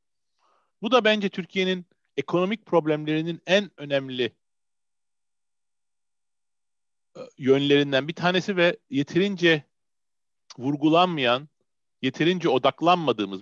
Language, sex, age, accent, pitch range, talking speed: Turkish, male, 40-59, native, 135-185 Hz, 70 wpm